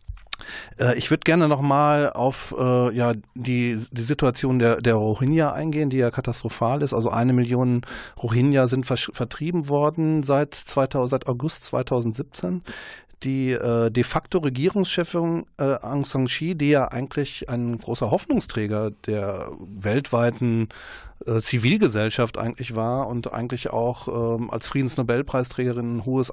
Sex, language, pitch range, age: male, German, 115-140 Hz, 40-59